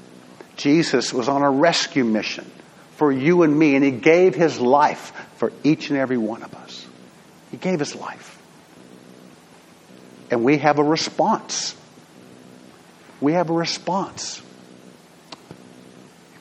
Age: 50-69